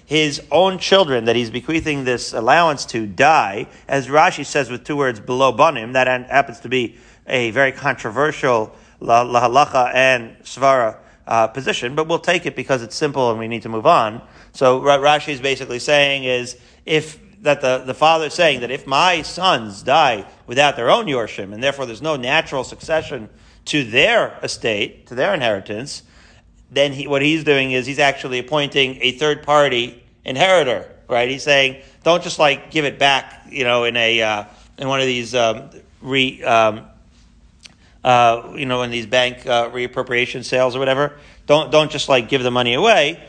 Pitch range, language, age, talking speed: 120-145 Hz, English, 40-59, 185 wpm